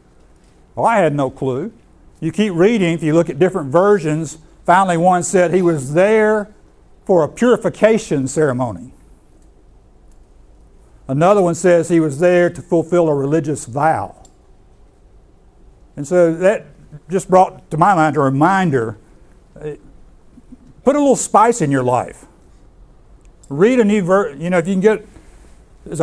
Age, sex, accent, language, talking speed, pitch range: 60-79, male, American, English, 145 wpm, 145-185 Hz